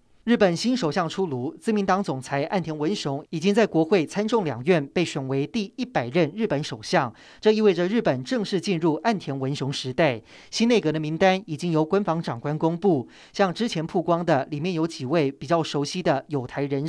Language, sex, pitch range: Chinese, male, 150-205 Hz